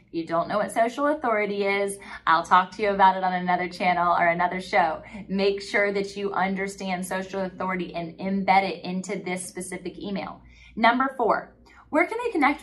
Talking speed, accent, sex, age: 185 wpm, American, female, 20-39